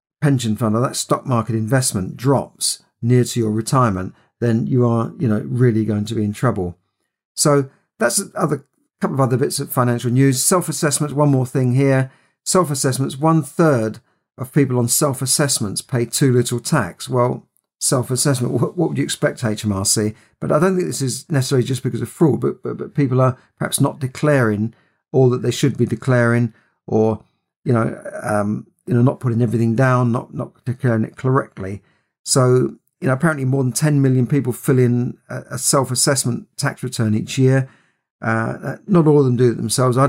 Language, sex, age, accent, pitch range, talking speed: English, male, 50-69, British, 115-140 Hz, 185 wpm